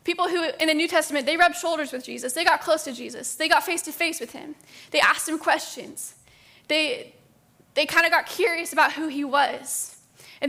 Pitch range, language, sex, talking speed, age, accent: 275-315 Hz, English, female, 205 wpm, 10-29, American